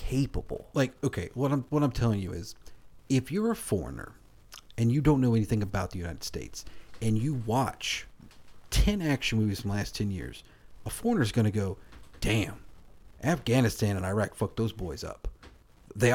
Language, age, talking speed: English, 40-59, 180 wpm